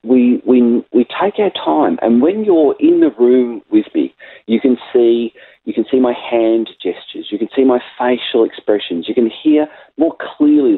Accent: Australian